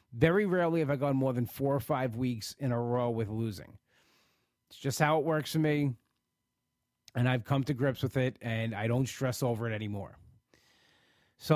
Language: English